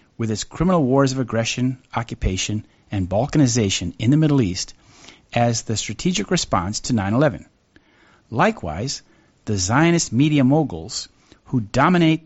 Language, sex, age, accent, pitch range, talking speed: English, male, 50-69, American, 110-155 Hz, 125 wpm